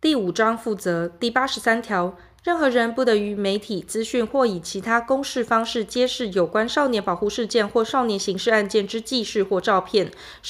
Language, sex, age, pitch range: Chinese, female, 20-39, 200-245 Hz